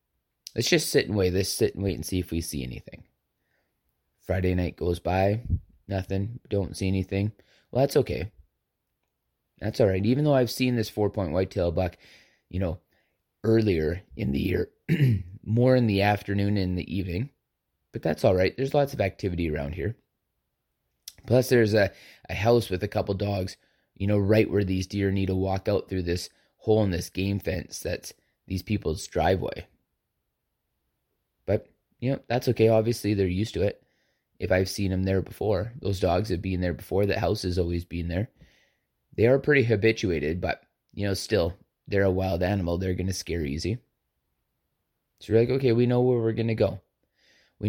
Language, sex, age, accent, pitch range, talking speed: English, male, 20-39, American, 90-110 Hz, 185 wpm